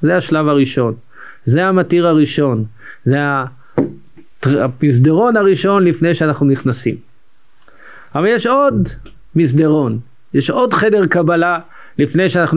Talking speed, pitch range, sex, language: 105 wpm, 125-160 Hz, male, Hebrew